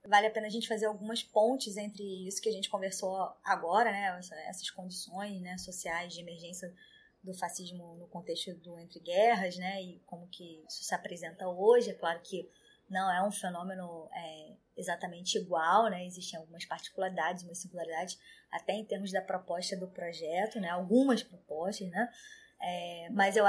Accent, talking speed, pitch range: Brazilian, 170 wpm, 185-245 Hz